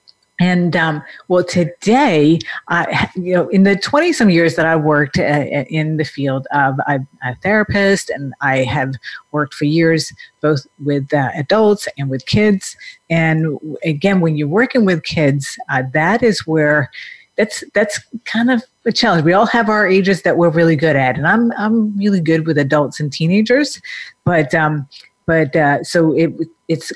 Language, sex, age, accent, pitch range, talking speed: English, female, 50-69, American, 145-200 Hz, 175 wpm